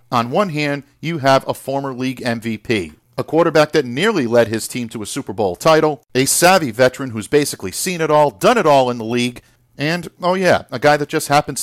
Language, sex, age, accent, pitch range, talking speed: English, male, 50-69, American, 115-150 Hz, 220 wpm